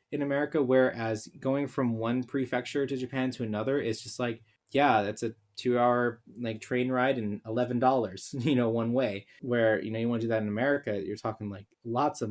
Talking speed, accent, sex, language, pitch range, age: 210 wpm, American, male, English, 110-130 Hz, 20-39